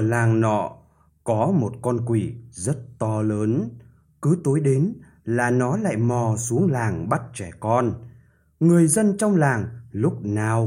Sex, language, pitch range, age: male, Vietnamese, 110-150 Hz, 20-39